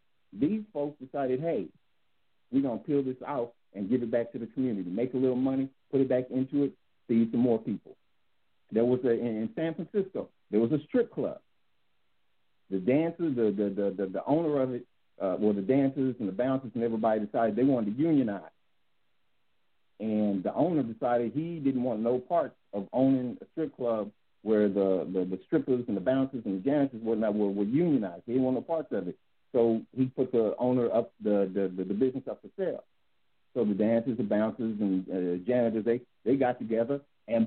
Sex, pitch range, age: male, 105-130 Hz, 50-69